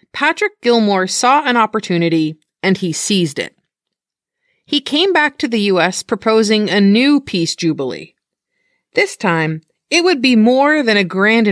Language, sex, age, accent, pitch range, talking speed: English, female, 30-49, American, 180-265 Hz, 150 wpm